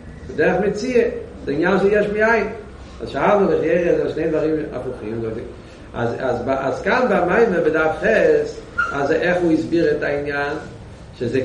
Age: 50-69